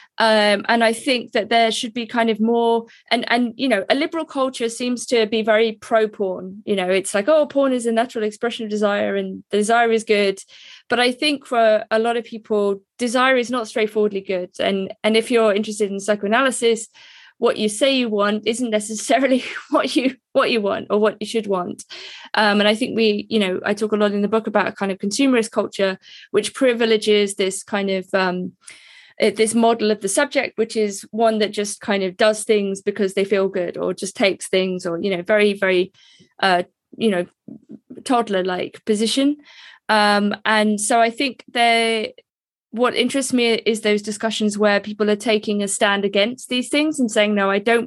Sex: female